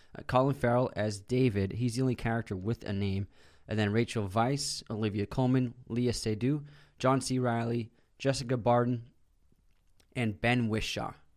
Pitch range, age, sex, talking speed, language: 105-130 Hz, 20-39, male, 150 wpm, English